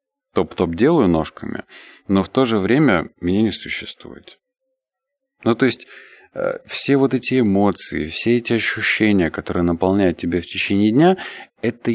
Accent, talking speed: native, 140 wpm